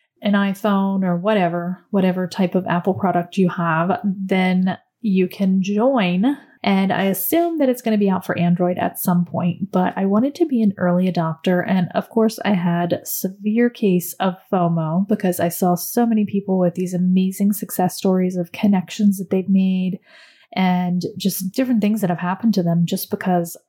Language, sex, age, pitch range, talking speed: English, female, 30-49, 180-215 Hz, 185 wpm